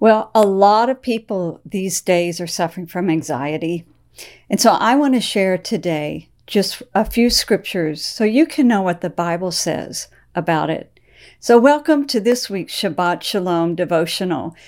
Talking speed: 165 wpm